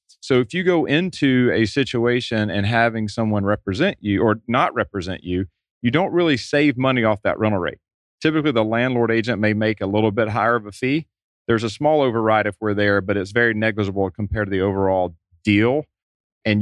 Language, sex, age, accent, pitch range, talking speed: English, male, 30-49, American, 100-125 Hz, 200 wpm